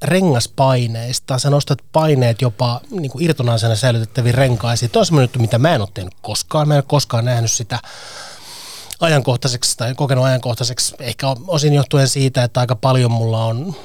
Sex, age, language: male, 30-49, Finnish